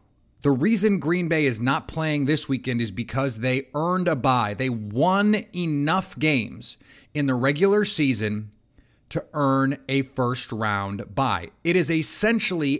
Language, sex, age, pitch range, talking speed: English, male, 30-49, 120-155 Hz, 145 wpm